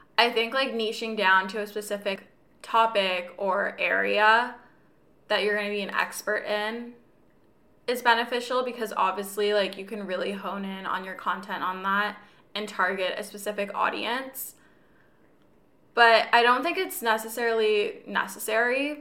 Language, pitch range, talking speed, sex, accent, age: English, 195-235 Hz, 145 wpm, female, American, 20-39